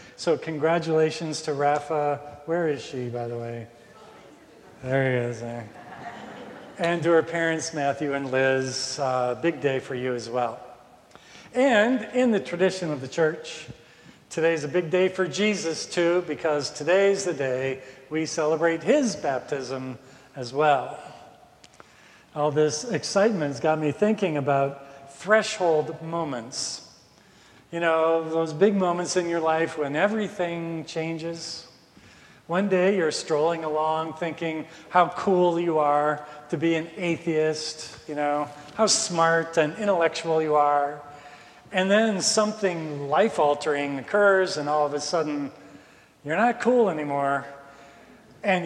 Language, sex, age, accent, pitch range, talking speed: English, male, 50-69, American, 140-170 Hz, 135 wpm